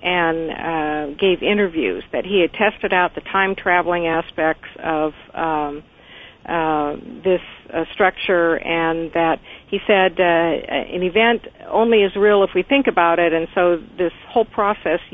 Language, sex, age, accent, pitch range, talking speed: English, female, 50-69, American, 165-195 Hz, 155 wpm